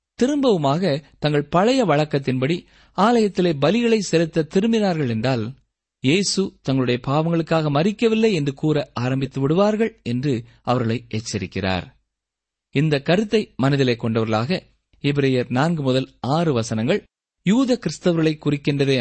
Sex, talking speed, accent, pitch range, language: male, 100 wpm, native, 115-180 Hz, Tamil